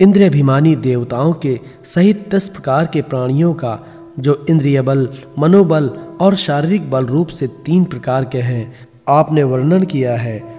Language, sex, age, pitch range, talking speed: Hindi, male, 40-59, 130-160 Hz, 155 wpm